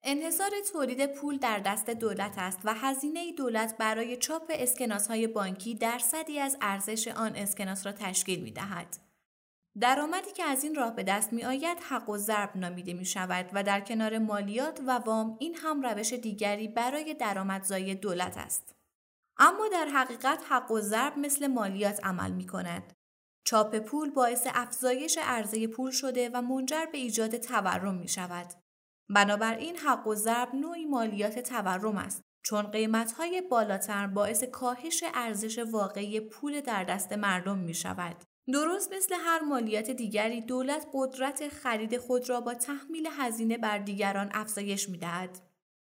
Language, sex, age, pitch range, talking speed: Persian, female, 20-39, 200-270 Hz, 150 wpm